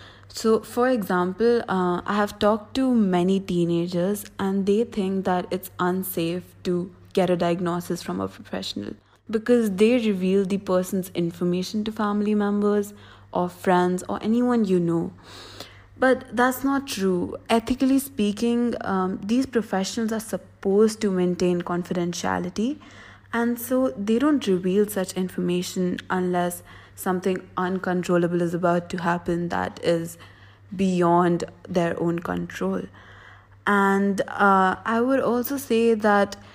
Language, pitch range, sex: English, 175-215 Hz, female